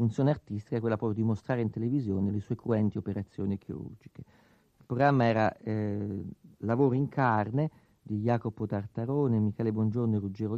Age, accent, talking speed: 50-69, native, 160 wpm